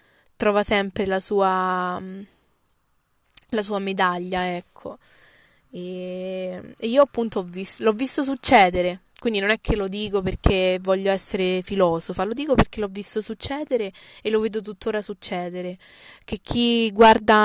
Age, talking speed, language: 20-39, 140 wpm, Italian